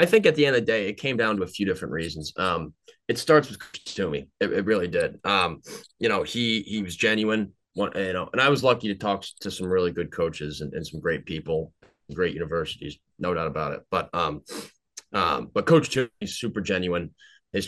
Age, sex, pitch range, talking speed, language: 20-39, male, 90-105 Hz, 225 wpm, English